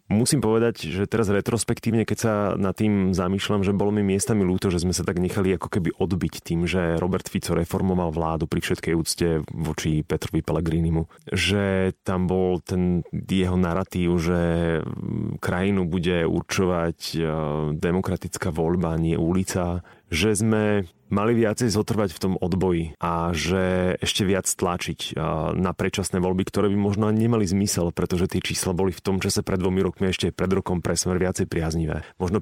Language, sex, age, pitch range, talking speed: Slovak, male, 30-49, 90-100 Hz, 165 wpm